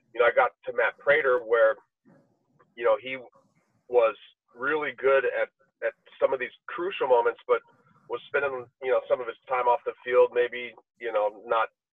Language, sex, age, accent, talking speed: English, male, 40-59, American, 185 wpm